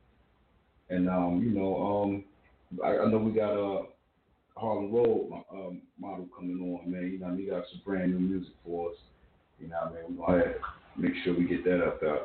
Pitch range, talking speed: 85-100 Hz, 205 wpm